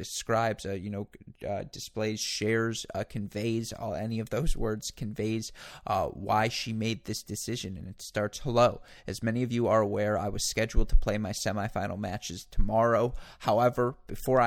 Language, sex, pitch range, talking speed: English, male, 100-115 Hz, 170 wpm